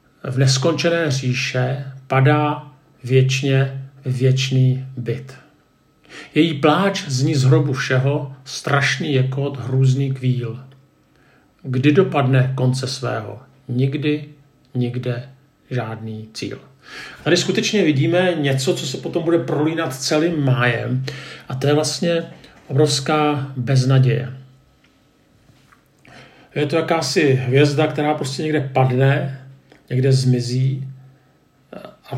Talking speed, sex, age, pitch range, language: 100 wpm, male, 50-69, 130-145 Hz, Czech